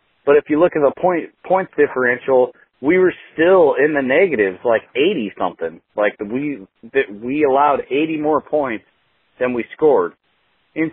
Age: 30-49